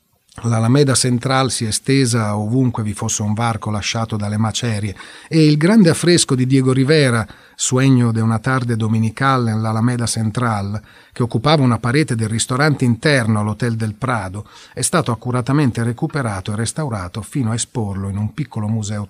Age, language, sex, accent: 40-59, Italian, male, native